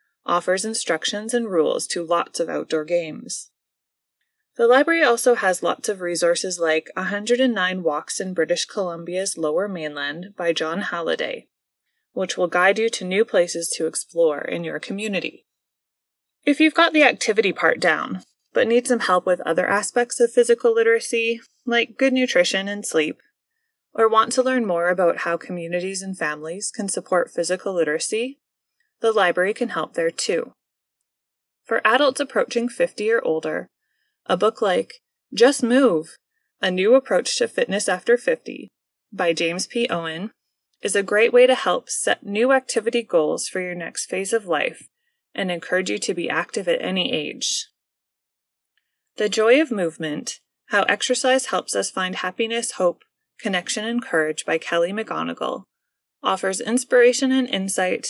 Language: English